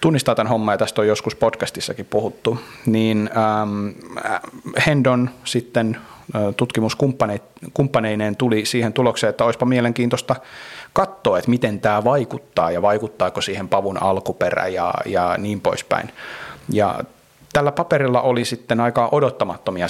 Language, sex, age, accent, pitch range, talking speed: Finnish, male, 30-49, native, 105-130 Hz, 125 wpm